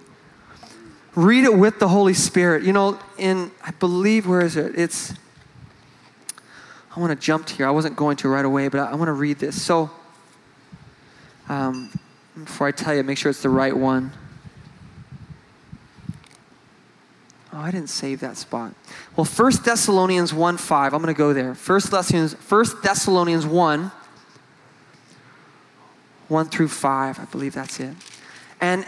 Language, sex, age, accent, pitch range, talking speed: English, male, 20-39, American, 160-220 Hz, 150 wpm